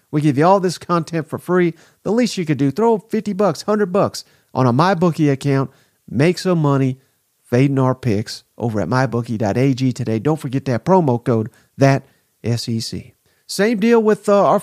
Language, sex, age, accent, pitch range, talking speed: English, male, 40-59, American, 135-180 Hz, 180 wpm